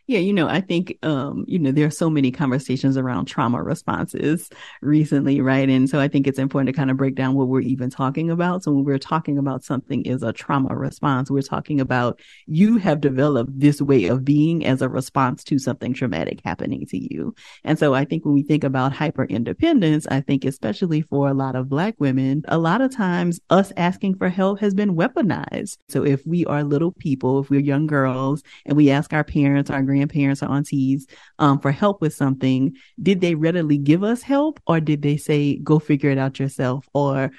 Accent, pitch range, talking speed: American, 135-160 Hz, 210 wpm